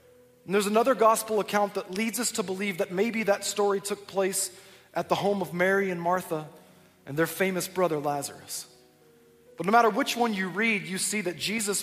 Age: 20-39